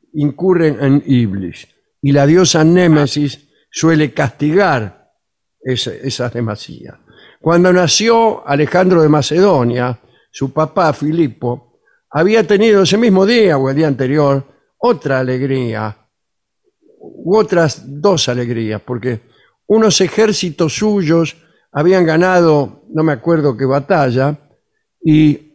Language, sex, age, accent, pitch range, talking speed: Spanish, male, 60-79, Argentinian, 130-180 Hz, 110 wpm